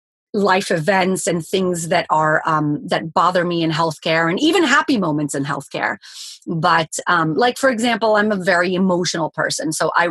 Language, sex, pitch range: English, female, 170-205 Hz